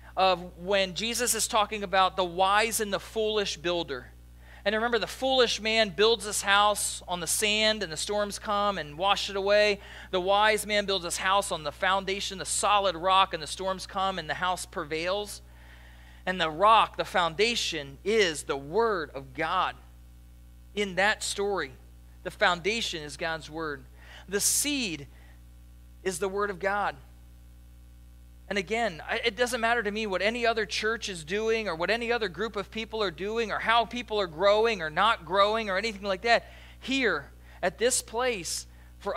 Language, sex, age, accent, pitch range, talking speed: English, male, 40-59, American, 170-215 Hz, 175 wpm